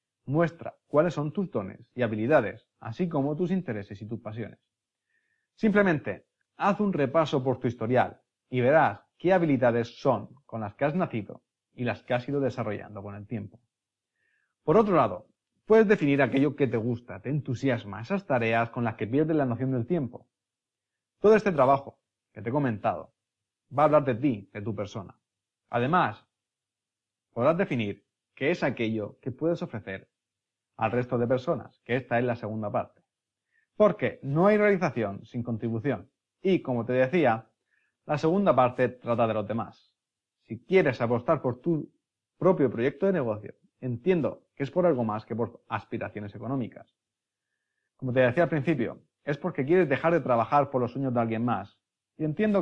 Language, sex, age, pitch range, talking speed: Spanish, male, 30-49, 110-150 Hz, 170 wpm